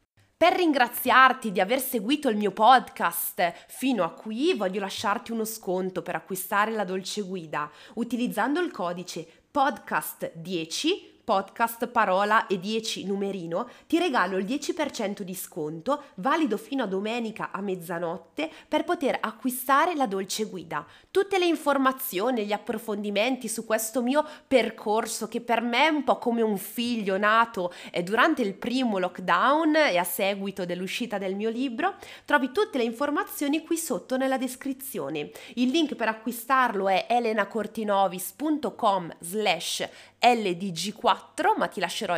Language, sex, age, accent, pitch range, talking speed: Italian, female, 20-39, native, 195-270 Hz, 135 wpm